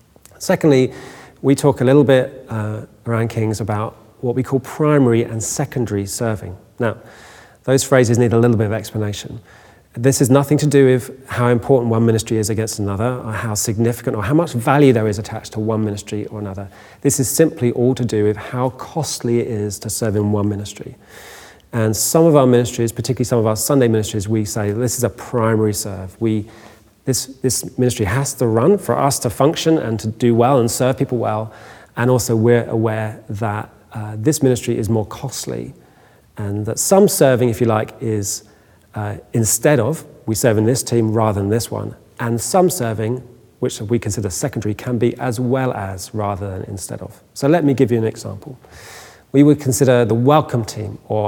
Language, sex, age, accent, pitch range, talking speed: English, male, 40-59, British, 110-130 Hz, 195 wpm